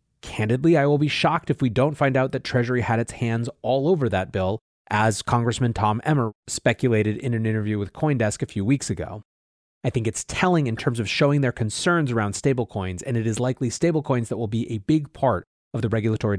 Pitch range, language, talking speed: 105-130 Hz, English, 215 wpm